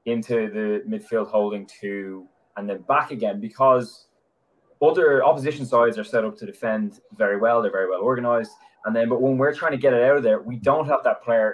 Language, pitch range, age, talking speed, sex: English, 110-150 Hz, 20-39, 215 wpm, male